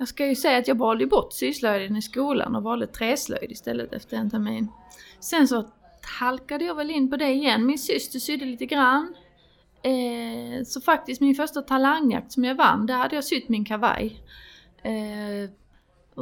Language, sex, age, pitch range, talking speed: Swedish, female, 30-49, 220-270 Hz, 180 wpm